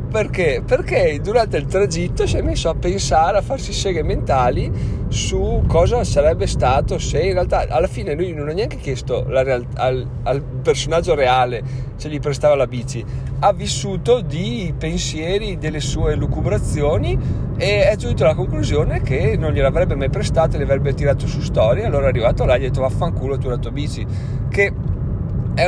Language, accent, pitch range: Italian, native, 110-145 Hz